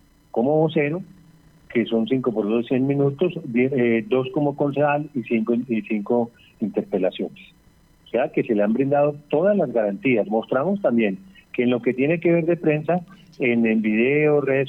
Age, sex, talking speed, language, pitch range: 40-59, male, 185 wpm, Spanish, 115-155 Hz